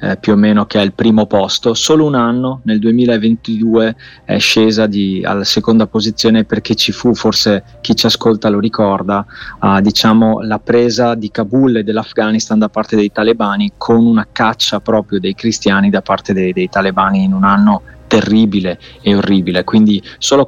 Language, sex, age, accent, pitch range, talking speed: Italian, male, 30-49, native, 105-115 Hz, 175 wpm